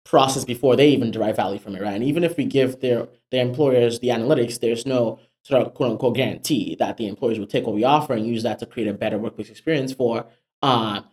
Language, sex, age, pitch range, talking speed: English, male, 20-39, 115-135 Hz, 235 wpm